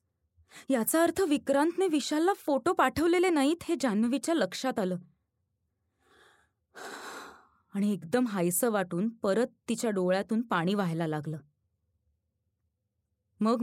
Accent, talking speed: native, 95 wpm